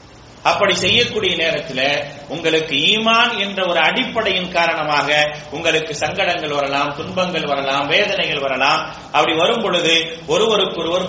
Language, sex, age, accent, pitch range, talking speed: English, male, 30-49, Indian, 165-220 Hz, 115 wpm